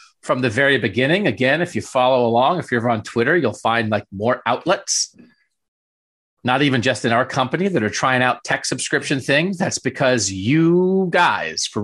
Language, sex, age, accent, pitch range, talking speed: English, male, 30-49, American, 115-155 Hz, 190 wpm